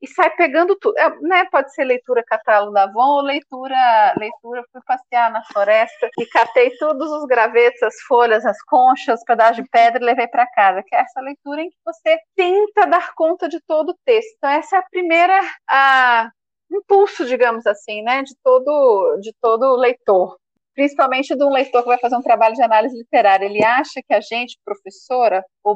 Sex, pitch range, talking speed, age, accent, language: female, 225-320 Hz, 195 wpm, 30-49, Brazilian, Portuguese